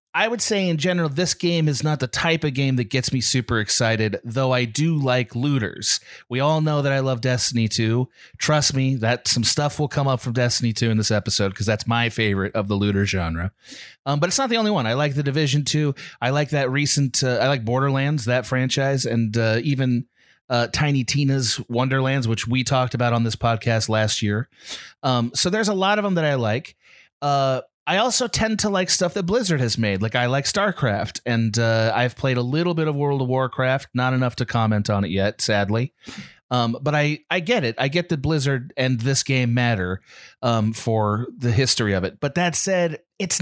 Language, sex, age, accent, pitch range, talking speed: English, male, 30-49, American, 120-160 Hz, 220 wpm